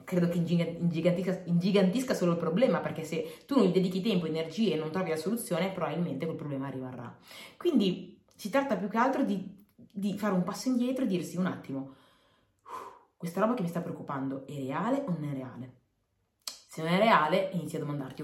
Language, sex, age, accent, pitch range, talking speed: Italian, female, 20-39, native, 140-185 Hz, 190 wpm